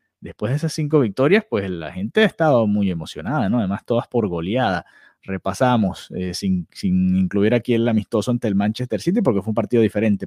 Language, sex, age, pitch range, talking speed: Spanish, male, 30-49, 100-130 Hz, 200 wpm